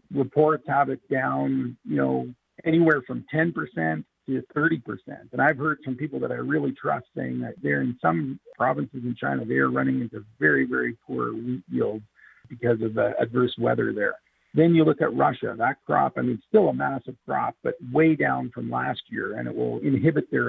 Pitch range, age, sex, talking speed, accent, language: 105-155 Hz, 50-69, male, 195 wpm, American, English